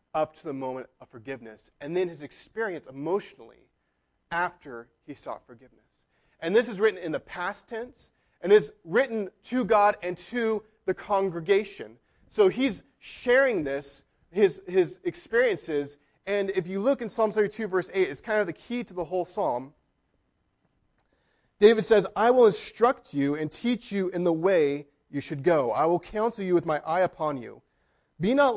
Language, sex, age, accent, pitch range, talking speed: English, male, 30-49, American, 150-220 Hz, 175 wpm